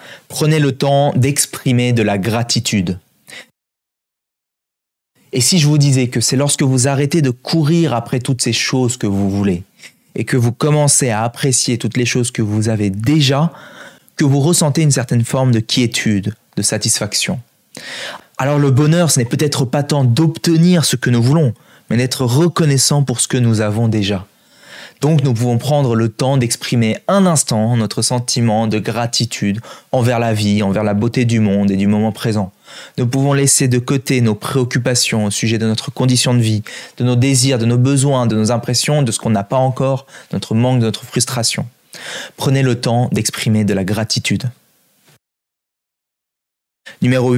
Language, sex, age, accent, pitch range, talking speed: French, male, 20-39, French, 115-140 Hz, 175 wpm